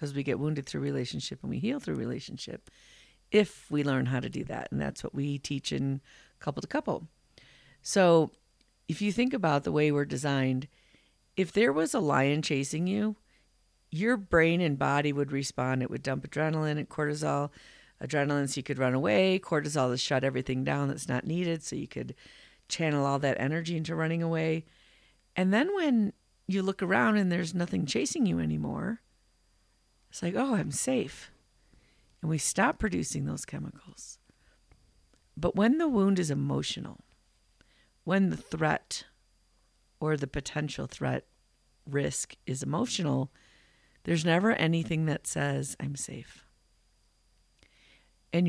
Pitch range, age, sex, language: 135-170 Hz, 50-69, female, English